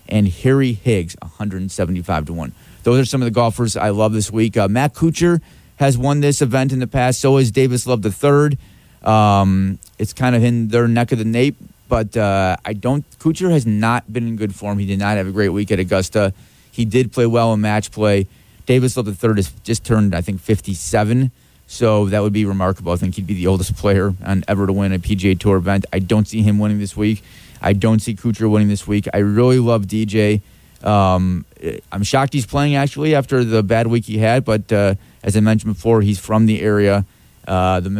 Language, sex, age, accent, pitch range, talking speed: English, male, 30-49, American, 100-125 Hz, 225 wpm